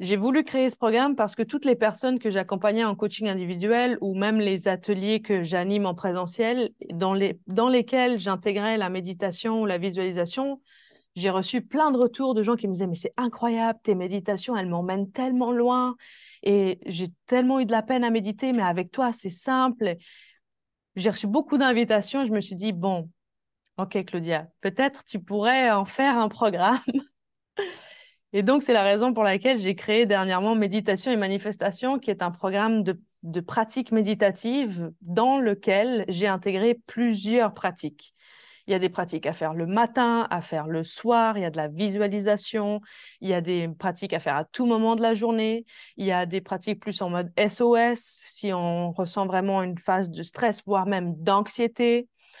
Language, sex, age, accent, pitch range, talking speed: French, female, 20-39, French, 190-235 Hz, 190 wpm